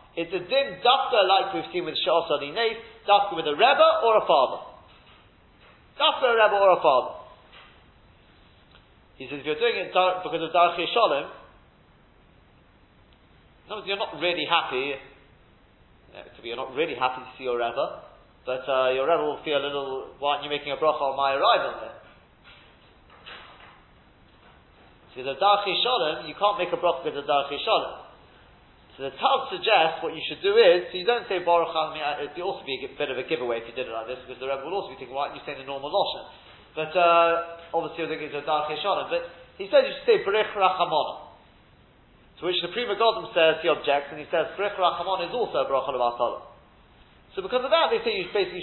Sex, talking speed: male, 195 wpm